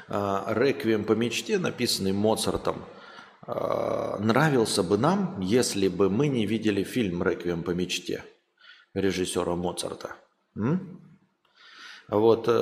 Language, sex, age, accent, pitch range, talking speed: Russian, male, 30-49, native, 95-120 Hz, 95 wpm